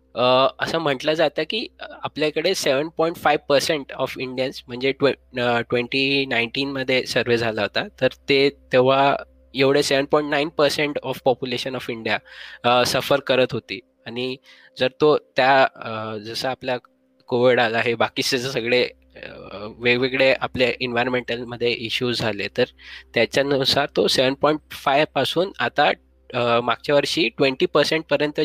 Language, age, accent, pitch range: Marathi, 20-39, native, 120-145 Hz